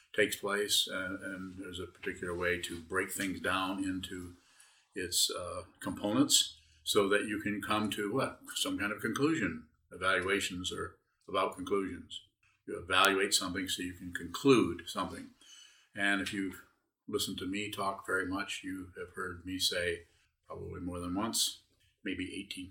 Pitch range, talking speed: 90-100 Hz, 155 wpm